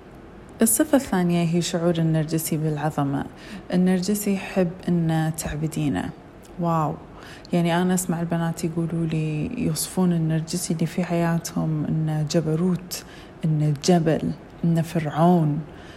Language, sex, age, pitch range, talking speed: Arabic, female, 20-39, 160-190 Hz, 100 wpm